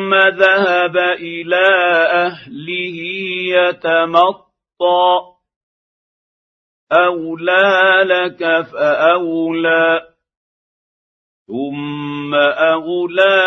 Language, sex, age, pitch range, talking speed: Arabic, male, 50-69, 165-180 Hz, 45 wpm